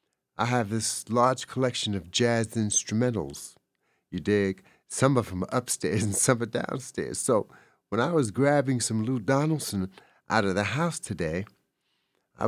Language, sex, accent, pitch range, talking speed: English, male, American, 95-125 Hz, 160 wpm